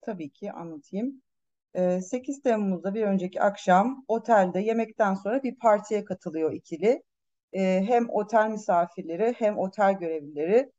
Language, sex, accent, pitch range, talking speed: Turkish, female, native, 180-250 Hz, 115 wpm